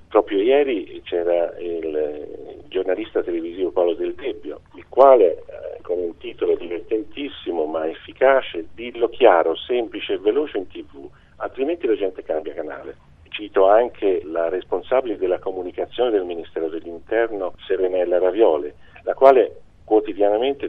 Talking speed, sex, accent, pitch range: 125 wpm, male, native, 350-430 Hz